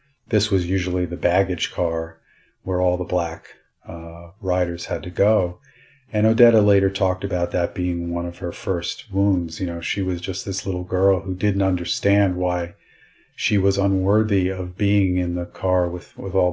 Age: 40-59